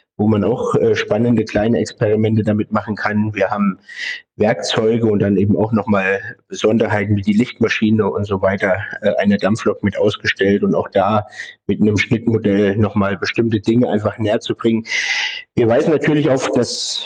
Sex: male